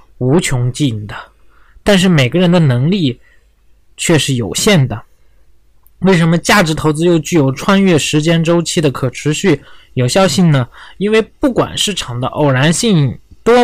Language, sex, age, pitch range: Chinese, male, 20-39, 140-190 Hz